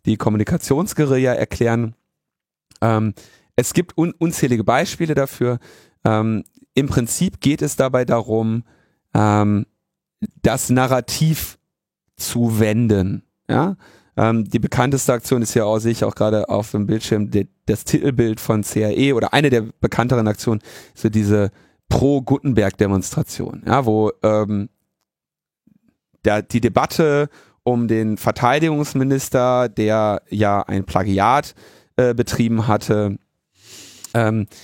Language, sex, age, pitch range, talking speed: German, male, 30-49, 110-140 Hz, 115 wpm